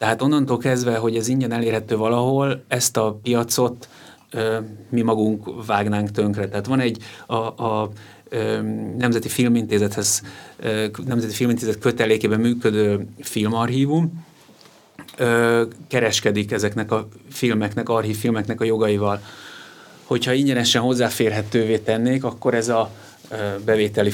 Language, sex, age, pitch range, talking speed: Hungarian, male, 30-49, 105-125 Hz, 115 wpm